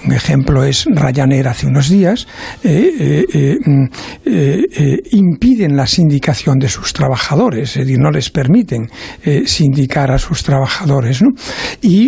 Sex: male